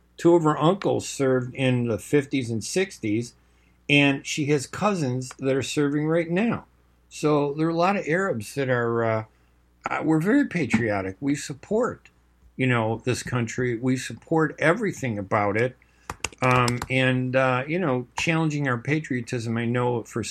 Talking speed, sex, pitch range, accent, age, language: 160 wpm, male, 105-140 Hz, American, 50-69, English